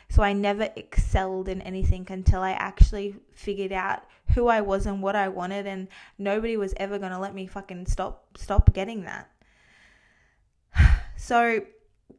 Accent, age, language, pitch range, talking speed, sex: Australian, 20-39, English, 190-210 Hz, 160 wpm, female